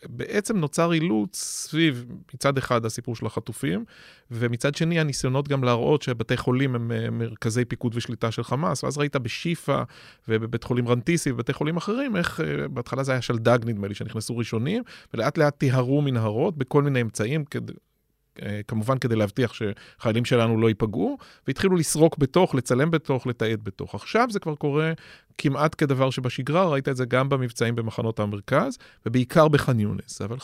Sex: male